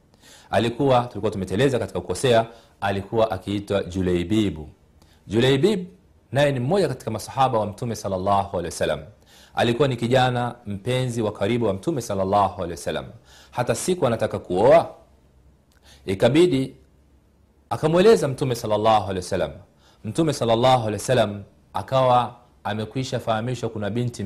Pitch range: 100-135 Hz